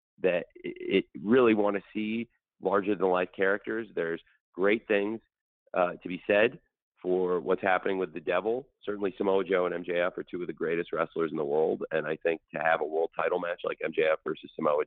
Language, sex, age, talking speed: English, male, 40-59, 195 wpm